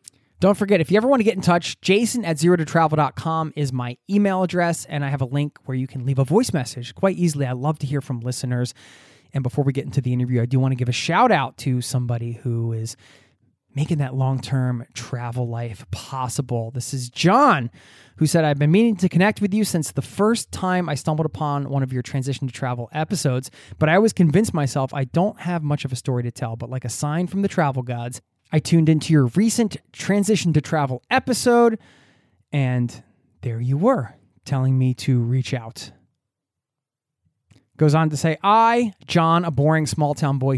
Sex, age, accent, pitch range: male, 20-39, American, 130-180 Hz